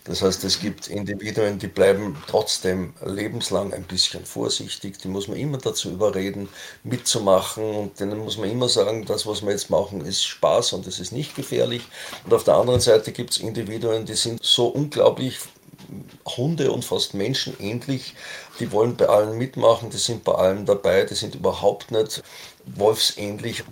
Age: 50-69